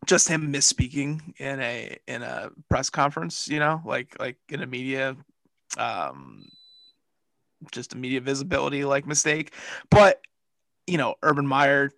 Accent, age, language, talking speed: American, 20-39, English, 140 wpm